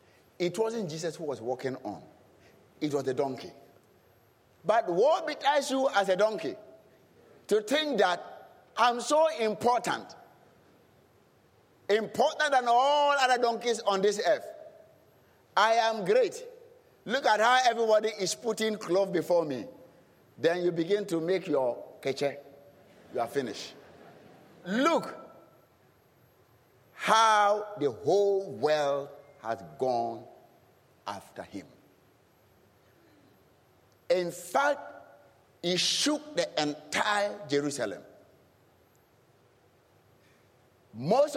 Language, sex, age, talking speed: English, male, 50-69, 105 wpm